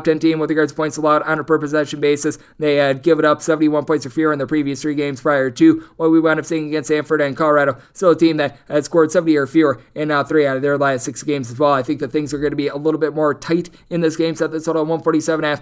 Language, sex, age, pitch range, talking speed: English, male, 20-39, 145-165 Hz, 290 wpm